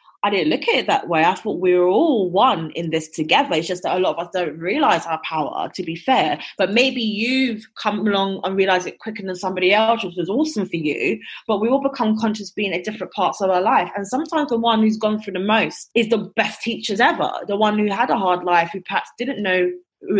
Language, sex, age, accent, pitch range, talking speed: English, female, 20-39, British, 180-230 Hz, 255 wpm